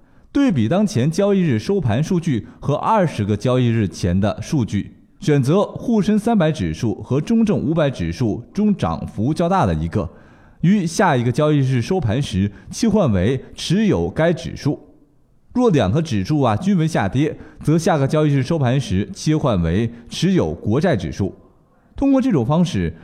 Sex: male